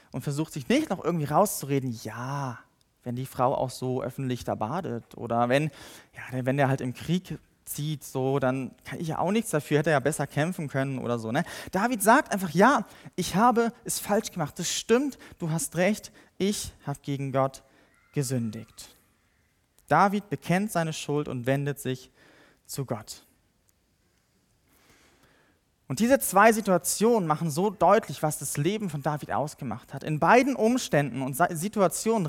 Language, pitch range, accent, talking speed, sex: German, 140-200 Hz, German, 165 wpm, male